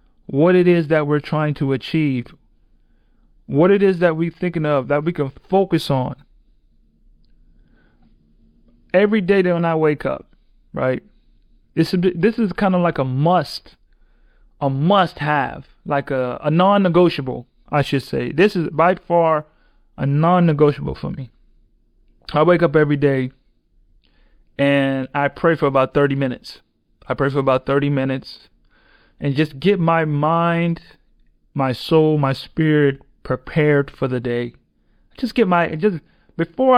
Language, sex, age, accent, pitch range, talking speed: English, male, 30-49, American, 130-175 Hz, 145 wpm